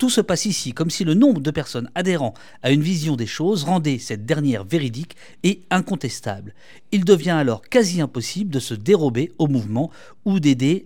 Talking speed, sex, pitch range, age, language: 190 wpm, male, 115-150 Hz, 50-69, French